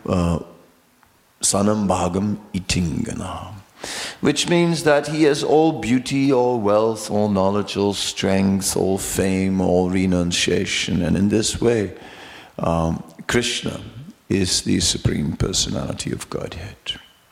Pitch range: 100-140 Hz